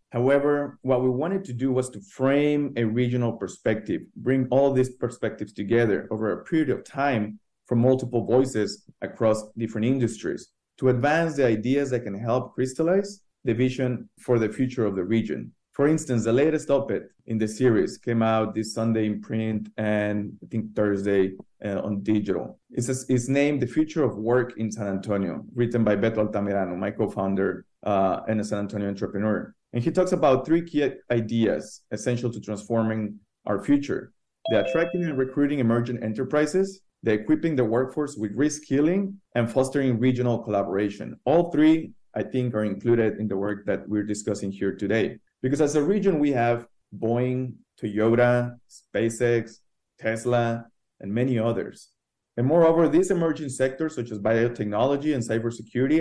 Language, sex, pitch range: English, male, 110-135 Hz